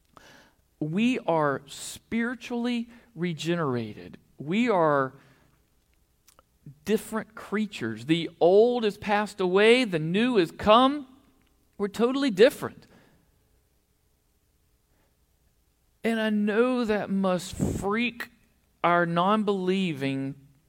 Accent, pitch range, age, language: American, 145-230 Hz, 50-69, English